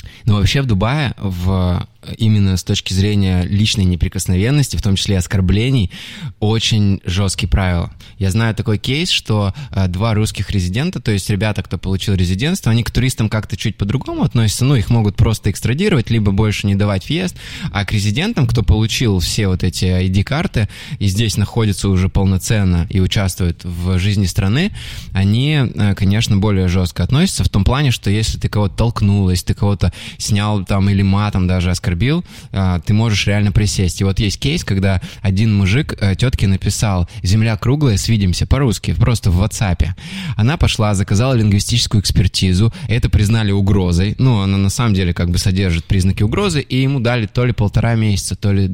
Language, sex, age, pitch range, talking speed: Russian, male, 20-39, 95-115 Hz, 170 wpm